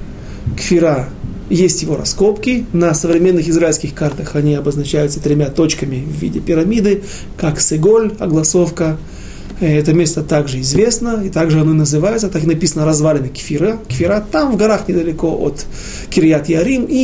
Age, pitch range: 30-49, 150-190 Hz